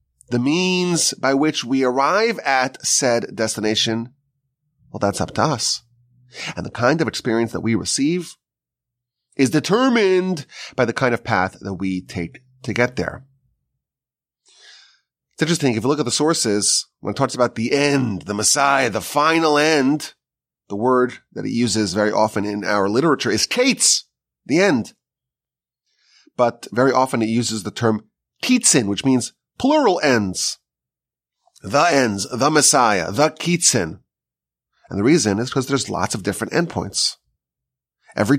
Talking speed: 150 wpm